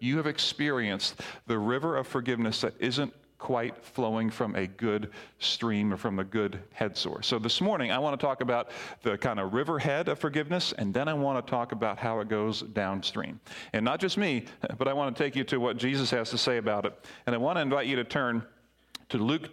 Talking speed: 225 wpm